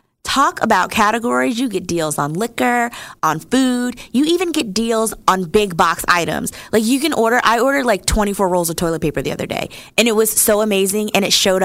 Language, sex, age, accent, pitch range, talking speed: English, female, 20-39, American, 185-265 Hz, 210 wpm